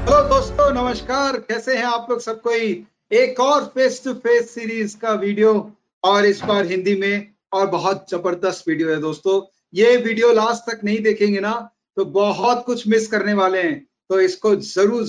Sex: male